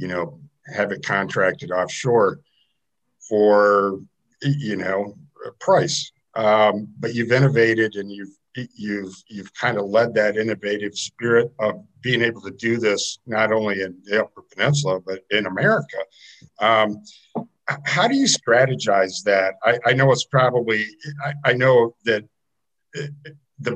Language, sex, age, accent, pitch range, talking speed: English, male, 50-69, American, 105-145 Hz, 140 wpm